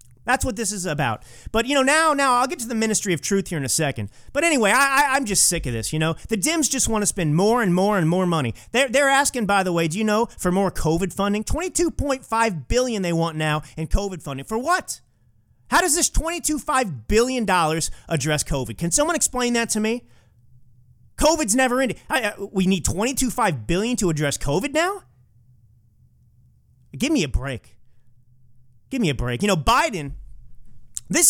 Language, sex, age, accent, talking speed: English, male, 30-49, American, 195 wpm